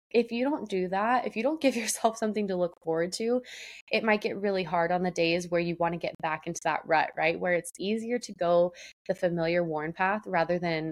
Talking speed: 240 wpm